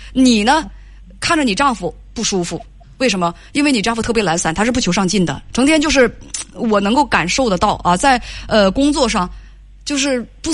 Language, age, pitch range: Chinese, 20-39, 185-255 Hz